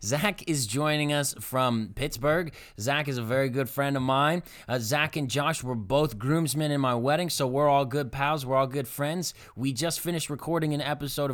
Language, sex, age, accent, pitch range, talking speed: English, male, 20-39, American, 115-145 Hz, 205 wpm